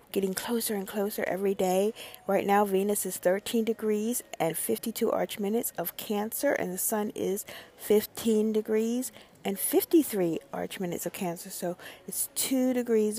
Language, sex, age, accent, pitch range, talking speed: English, female, 50-69, American, 170-215 Hz, 155 wpm